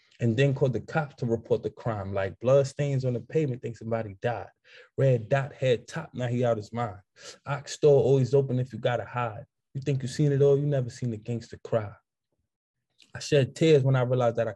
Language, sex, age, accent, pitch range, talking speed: English, male, 20-39, American, 120-150 Hz, 225 wpm